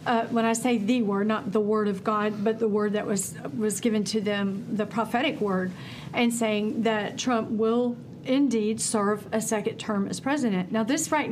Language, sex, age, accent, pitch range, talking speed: English, female, 50-69, American, 215-255 Hz, 200 wpm